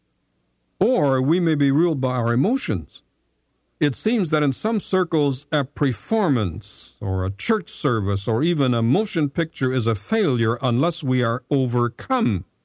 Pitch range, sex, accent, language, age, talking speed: 95-145 Hz, male, American, English, 50-69, 150 wpm